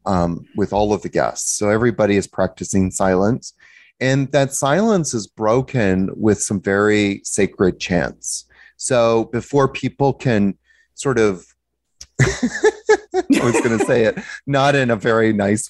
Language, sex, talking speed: English, male, 145 wpm